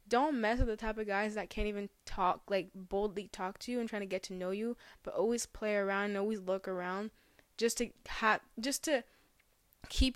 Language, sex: English, female